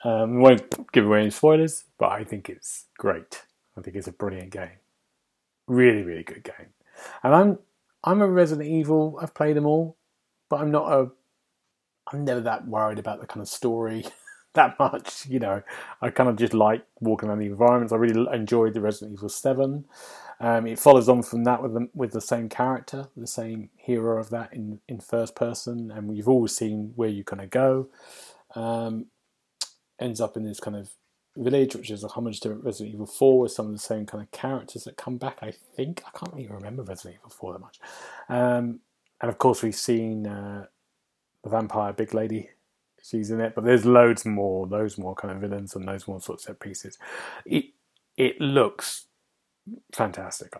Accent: British